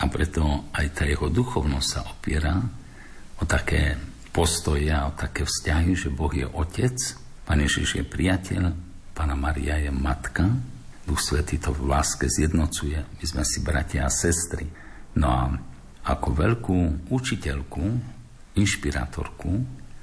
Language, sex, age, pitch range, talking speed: Slovak, male, 60-79, 70-95 Hz, 130 wpm